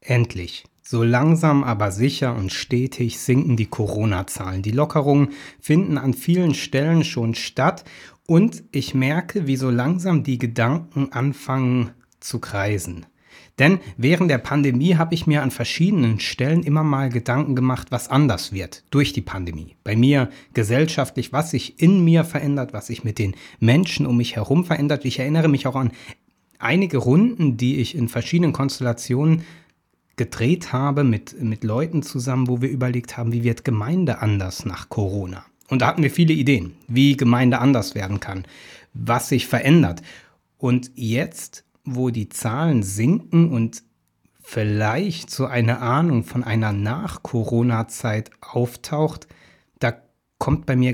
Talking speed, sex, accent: 150 wpm, male, German